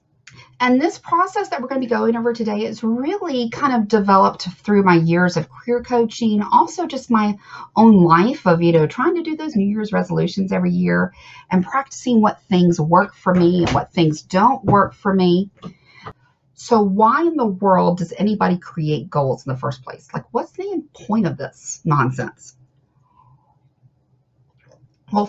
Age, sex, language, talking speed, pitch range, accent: 40-59, female, English, 175 wpm, 150-230 Hz, American